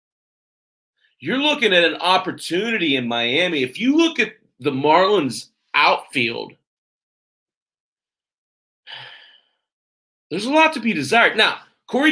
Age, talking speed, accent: 30-49, 110 wpm, American